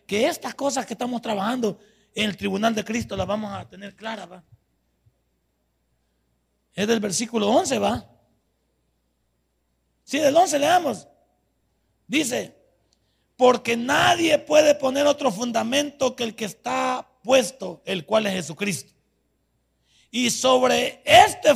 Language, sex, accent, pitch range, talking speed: Spanish, male, Mexican, 180-270 Hz, 130 wpm